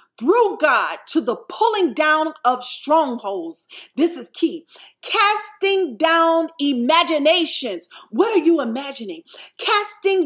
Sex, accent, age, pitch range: female, American, 40-59, 275-350 Hz